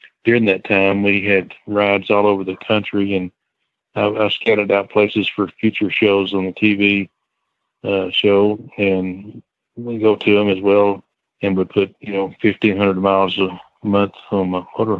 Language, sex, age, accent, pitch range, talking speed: English, male, 40-59, American, 95-105 Hz, 175 wpm